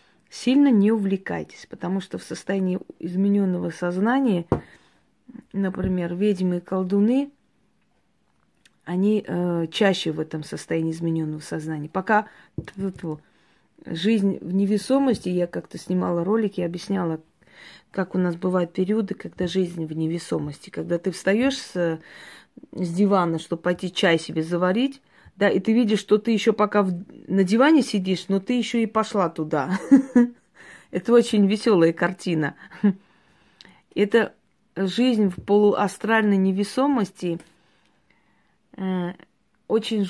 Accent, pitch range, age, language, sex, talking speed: native, 170-210 Hz, 30-49, Russian, female, 120 wpm